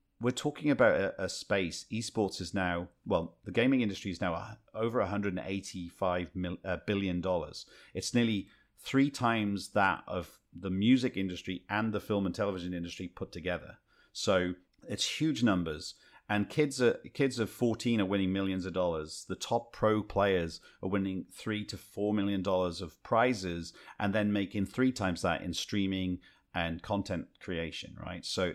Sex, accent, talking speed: male, British, 165 wpm